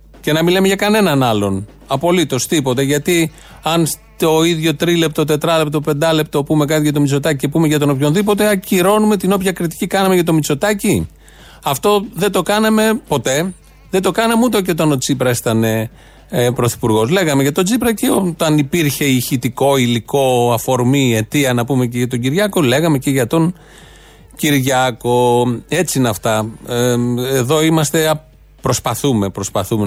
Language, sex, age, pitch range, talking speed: Greek, male, 40-59, 120-165 Hz, 155 wpm